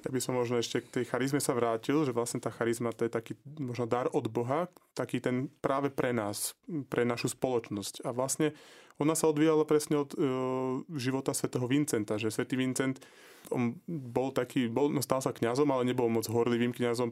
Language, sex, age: Slovak, male, 20-39